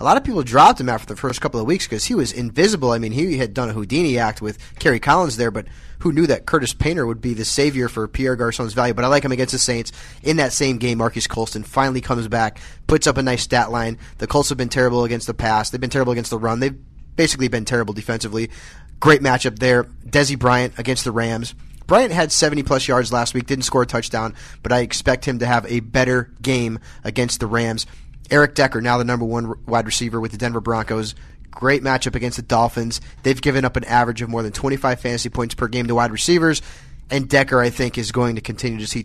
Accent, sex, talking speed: American, male, 240 wpm